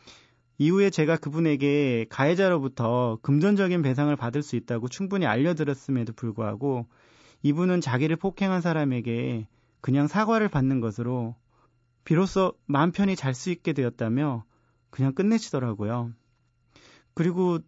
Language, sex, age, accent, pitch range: Korean, male, 30-49, native, 120-160 Hz